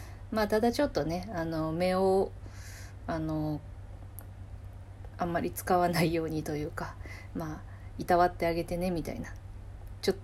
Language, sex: Japanese, female